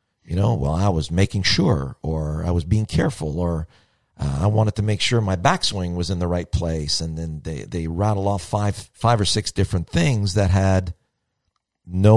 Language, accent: English, American